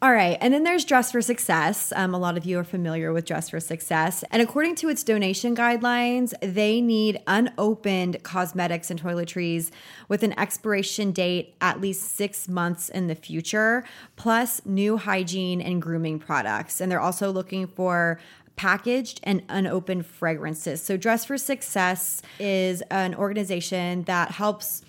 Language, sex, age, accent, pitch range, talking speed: English, female, 20-39, American, 170-205 Hz, 160 wpm